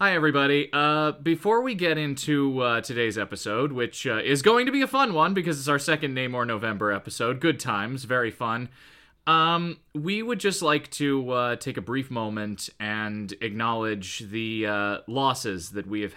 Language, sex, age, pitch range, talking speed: English, male, 20-39, 105-140 Hz, 180 wpm